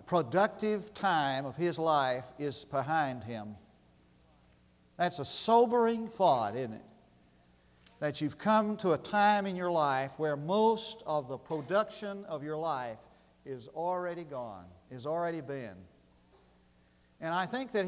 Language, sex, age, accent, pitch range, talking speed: English, male, 50-69, American, 135-200 Hz, 140 wpm